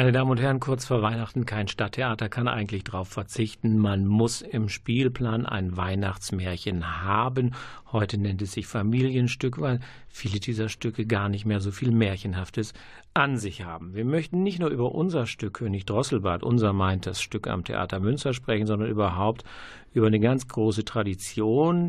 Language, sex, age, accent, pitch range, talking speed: German, male, 50-69, German, 100-125 Hz, 170 wpm